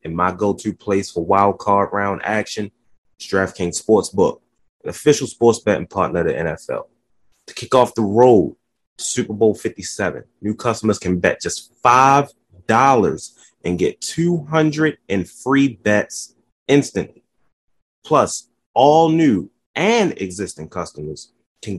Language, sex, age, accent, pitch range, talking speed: English, male, 30-49, American, 95-140 Hz, 130 wpm